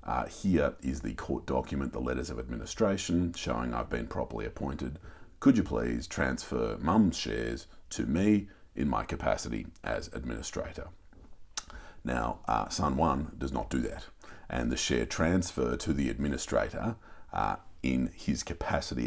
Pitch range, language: 70-90 Hz, English